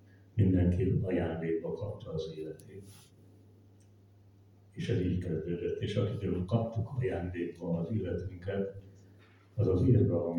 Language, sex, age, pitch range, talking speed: Hungarian, male, 60-79, 90-105 Hz, 105 wpm